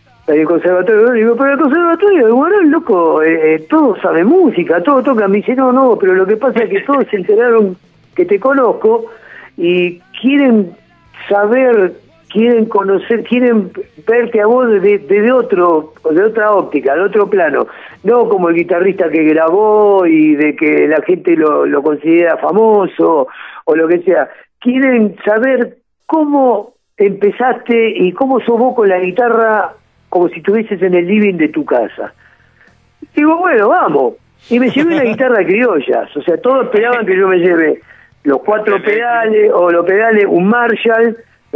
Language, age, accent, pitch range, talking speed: Spanish, 50-69, Argentinian, 180-265 Hz, 165 wpm